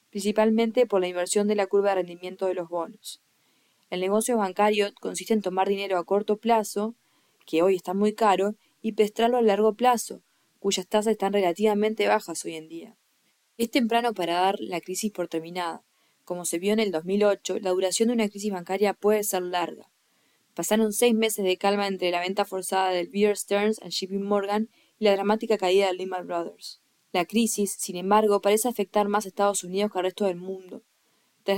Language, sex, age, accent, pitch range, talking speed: English, female, 20-39, Argentinian, 185-210 Hz, 190 wpm